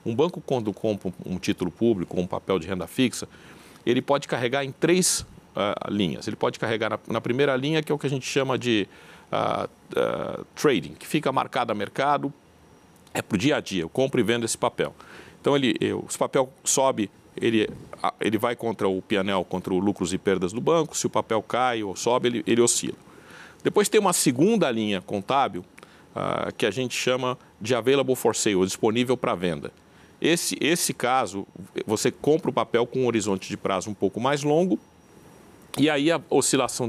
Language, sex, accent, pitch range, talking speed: Portuguese, male, Brazilian, 105-145 Hz, 195 wpm